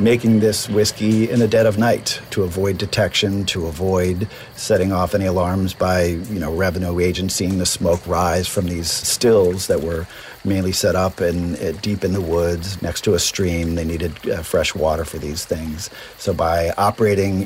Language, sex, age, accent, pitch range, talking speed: English, male, 50-69, American, 85-105 Hz, 190 wpm